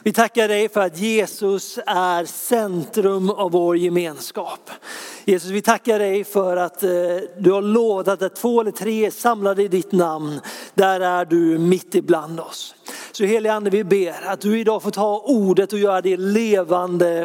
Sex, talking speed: male, 165 wpm